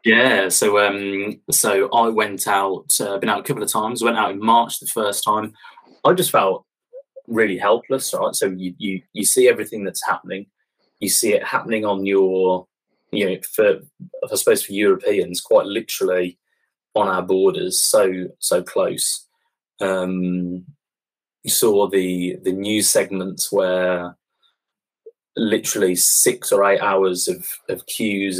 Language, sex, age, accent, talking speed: English, male, 20-39, British, 150 wpm